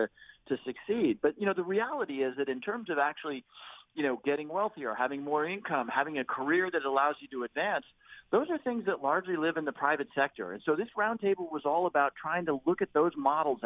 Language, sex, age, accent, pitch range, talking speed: English, male, 40-59, American, 125-165 Hz, 225 wpm